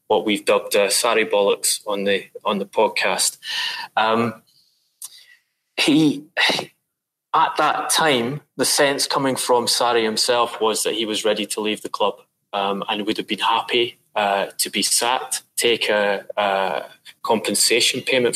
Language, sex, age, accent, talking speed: English, male, 20-39, British, 150 wpm